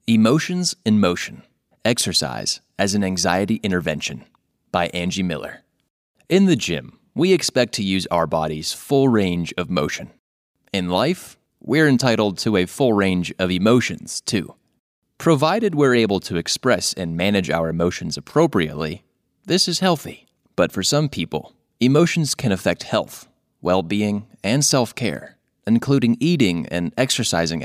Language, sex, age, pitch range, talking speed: English, male, 30-49, 90-125 Hz, 135 wpm